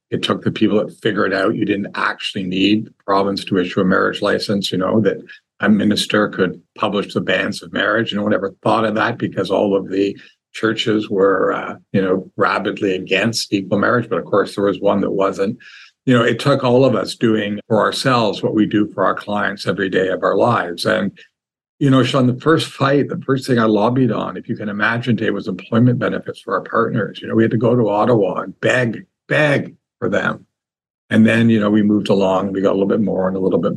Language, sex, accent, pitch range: English, male, American, 100-130 Hz